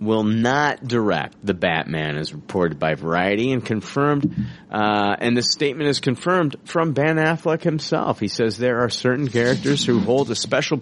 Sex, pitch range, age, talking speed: male, 95-125 Hz, 40-59, 170 wpm